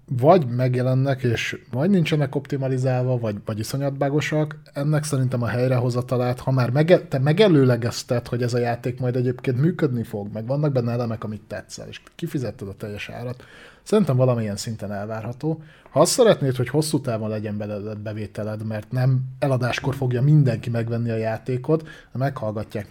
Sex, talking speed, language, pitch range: male, 155 wpm, Hungarian, 115-150 Hz